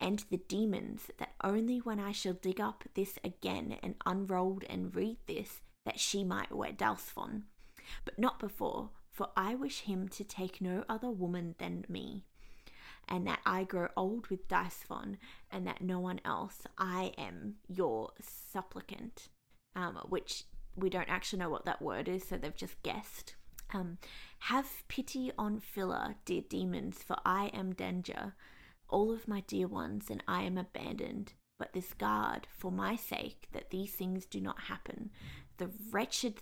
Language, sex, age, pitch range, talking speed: English, female, 20-39, 185-225 Hz, 165 wpm